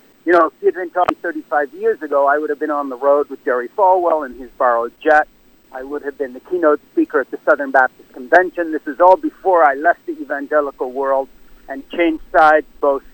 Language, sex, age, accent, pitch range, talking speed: English, male, 50-69, American, 145-185 Hz, 220 wpm